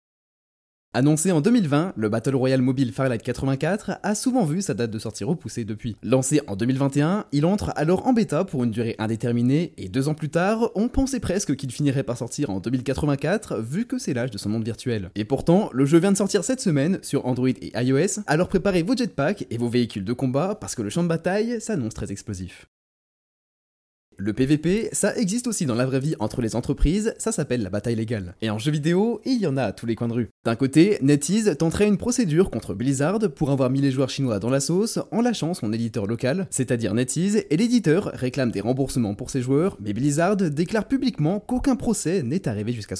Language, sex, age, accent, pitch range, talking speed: French, male, 20-39, French, 120-185 Hz, 215 wpm